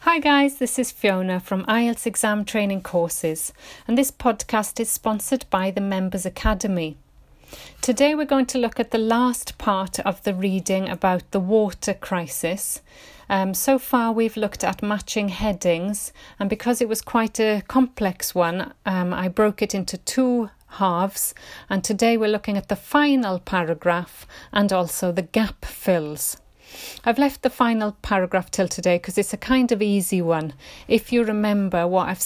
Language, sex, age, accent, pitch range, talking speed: English, female, 40-59, British, 185-230 Hz, 165 wpm